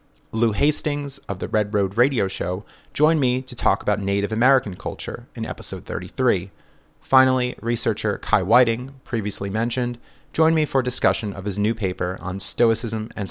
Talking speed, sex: 165 wpm, male